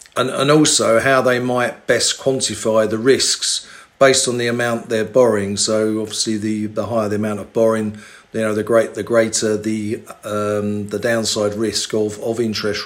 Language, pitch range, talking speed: English, 105-125 Hz, 180 wpm